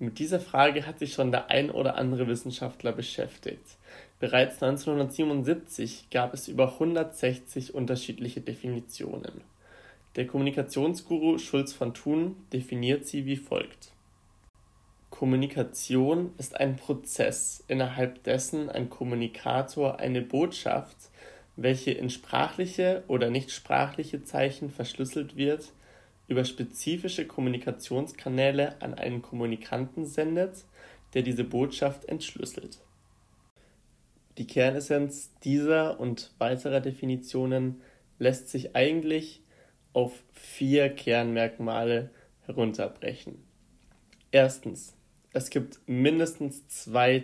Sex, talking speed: male, 95 wpm